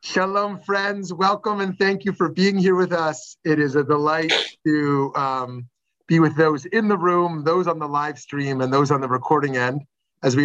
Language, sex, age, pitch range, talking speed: English, male, 30-49, 130-165 Hz, 205 wpm